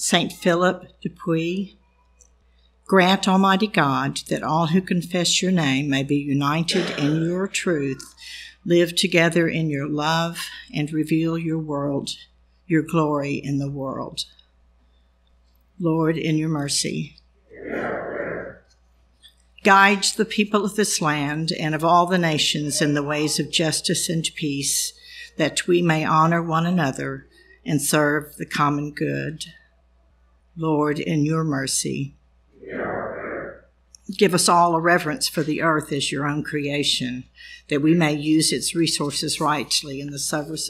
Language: English